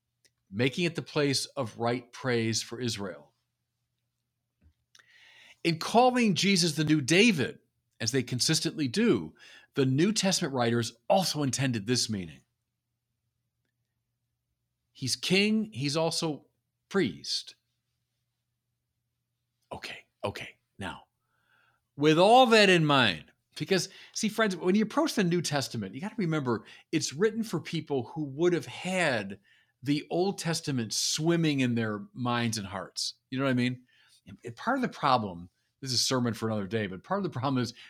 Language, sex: English, male